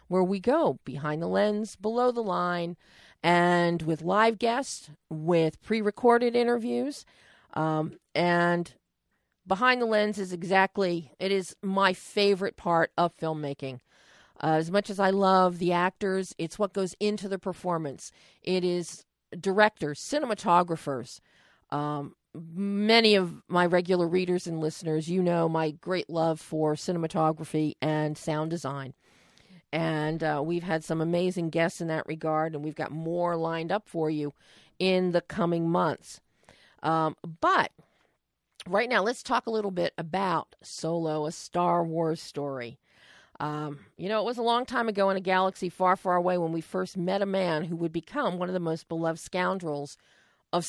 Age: 40-59